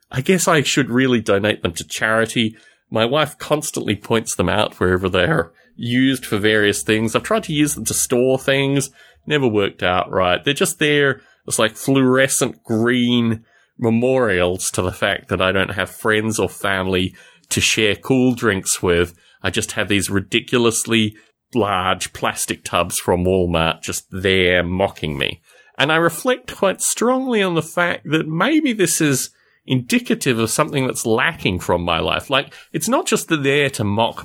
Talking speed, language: 170 wpm, English